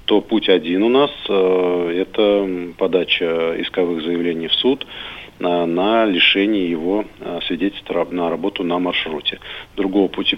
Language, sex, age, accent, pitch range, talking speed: Russian, male, 40-59, native, 85-100 Hz, 125 wpm